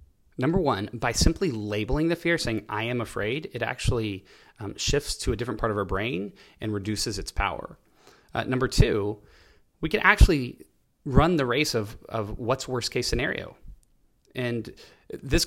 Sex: male